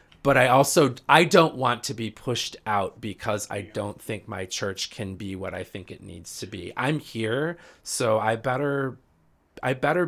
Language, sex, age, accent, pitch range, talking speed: English, male, 30-49, American, 95-115 Hz, 190 wpm